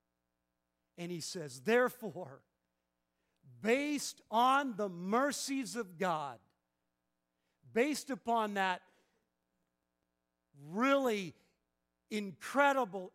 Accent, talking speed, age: American, 70 wpm, 50-69